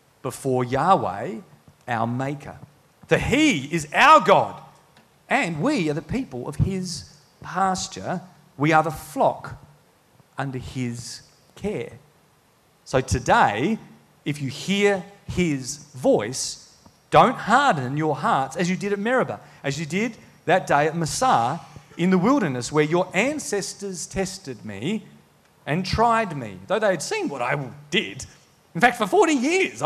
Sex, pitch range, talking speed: male, 130-185 Hz, 140 wpm